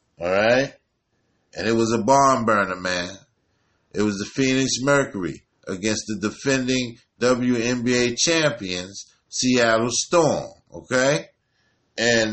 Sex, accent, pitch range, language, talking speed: male, American, 110-135 Hz, English, 105 wpm